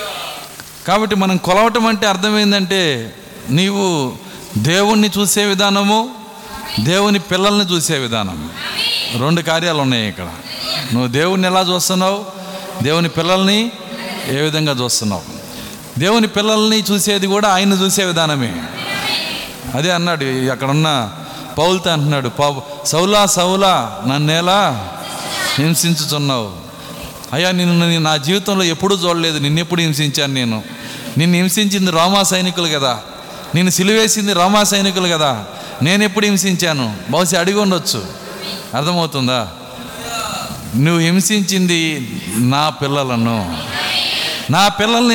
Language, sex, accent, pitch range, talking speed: Telugu, male, native, 145-205 Hz, 100 wpm